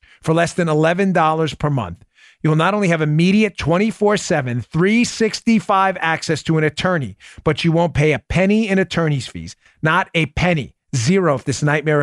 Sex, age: male, 40-59